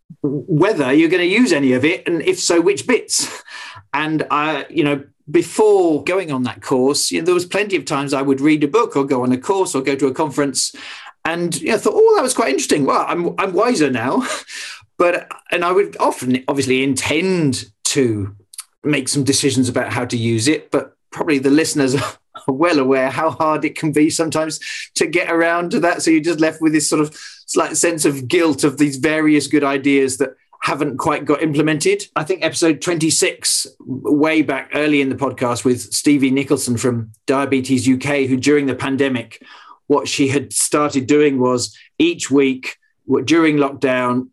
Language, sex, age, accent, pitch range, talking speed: English, male, 40-59, British, 135-165 Hz, 200 wpm